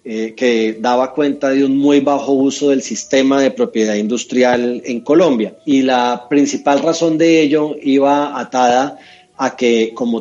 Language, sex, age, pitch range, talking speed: Spanish, male, 30-49, 120-145 Hz, 160 wpm